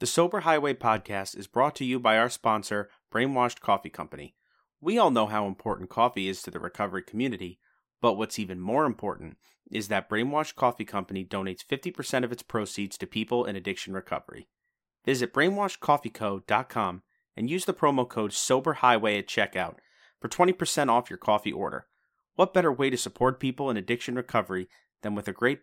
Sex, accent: male, American